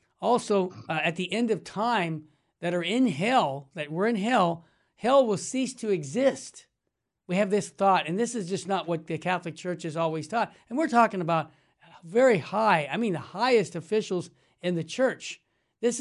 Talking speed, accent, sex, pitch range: 190 wpm, American, male, 165-210 Hz